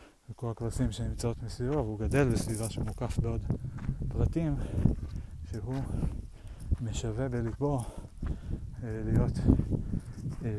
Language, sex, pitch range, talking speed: Hebrew, male, 95-115 Hz, 90 wpm